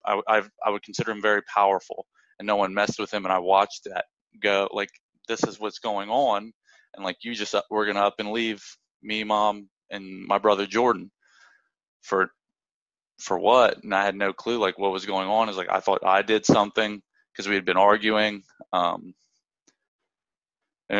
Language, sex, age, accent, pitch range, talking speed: English, male, 20-39, American, 100-110 Hz, 190 wpm